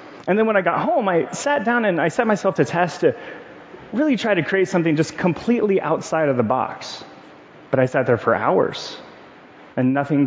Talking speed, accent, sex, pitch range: 205 wpm, American, male, 125-175 Hz